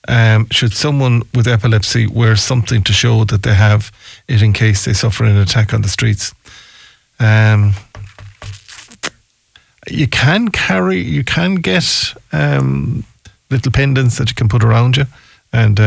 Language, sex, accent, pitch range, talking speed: English, male, Irish, 105-120 Hz, 145 wpm